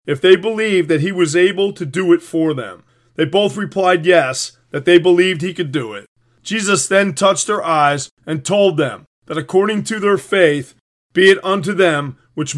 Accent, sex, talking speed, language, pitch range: American, male, 195 wpm, English, 155-190 Hz